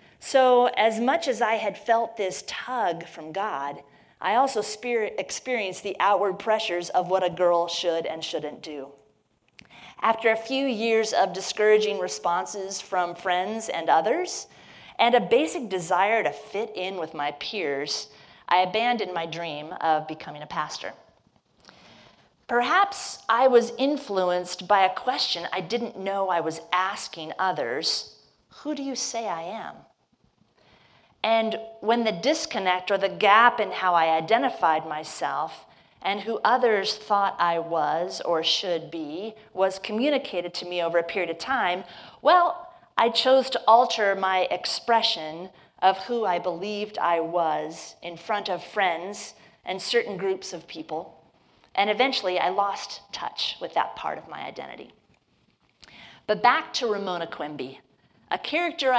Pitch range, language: 175-230 Hz, English